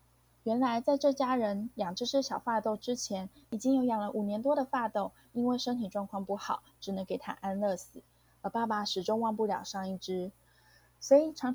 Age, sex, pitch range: 20-39, female, 195-250 Hz